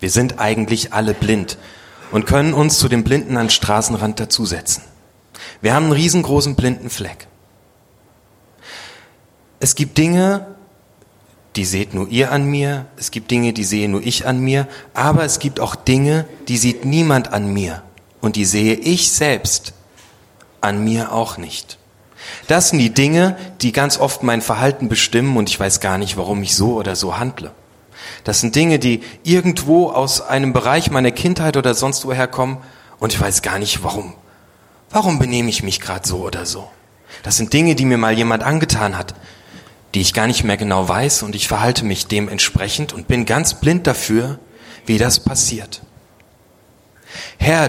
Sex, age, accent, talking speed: male, 30-49, German, 170 wpm